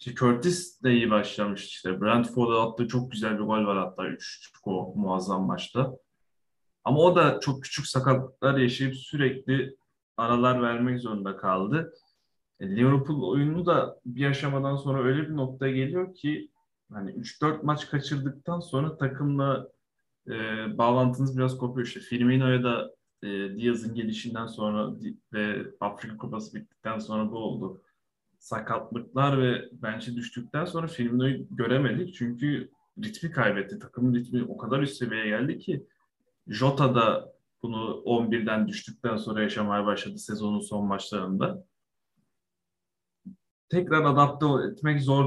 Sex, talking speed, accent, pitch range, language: male, 130 wpm, native, 110-140 Hz, Turkish